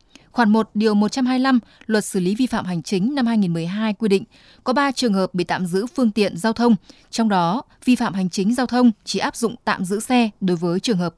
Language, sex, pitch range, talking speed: Vietnamese, female, 190-235 Hz, 270 wpm